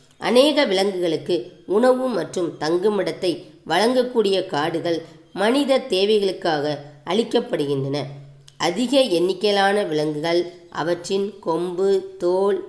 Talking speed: 75 wpm